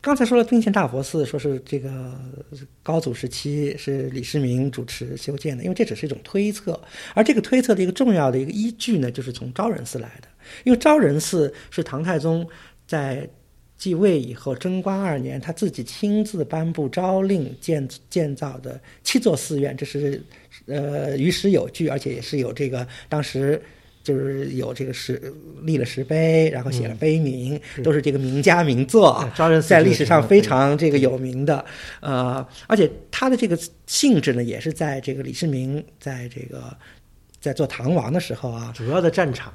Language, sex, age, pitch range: Chinese, male, 50-69, 130-165 Hz